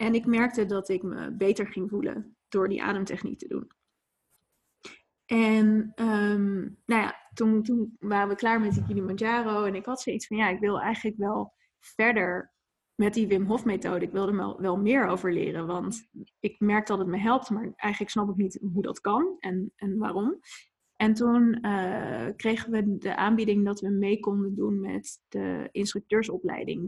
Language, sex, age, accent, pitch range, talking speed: Dutch, female, 20-39, Dutch, 195-225 Hz, 185 wpm